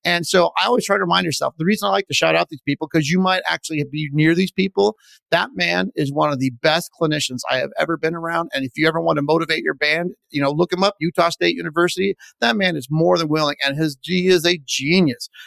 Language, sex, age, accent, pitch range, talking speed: English, male, 40-59, American, 140-170 Hz, 260 wpm